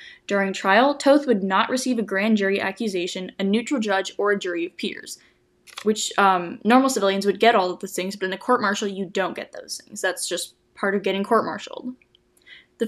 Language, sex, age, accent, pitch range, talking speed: English, female, 10-29, American, 195-240 Hz, 205 wpm